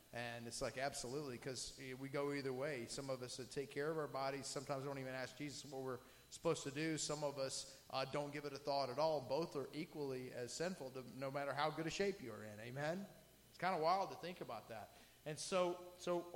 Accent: American